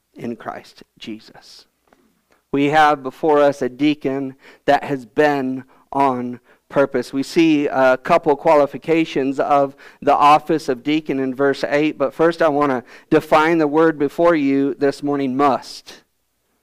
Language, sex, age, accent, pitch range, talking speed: English, male, 50-69, American, 135-155 Hz, 145 wpm